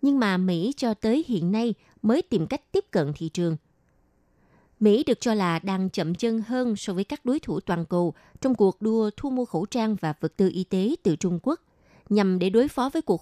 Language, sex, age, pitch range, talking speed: Vietnamese, female, 20-39, 180-235 Hz, 225 wpm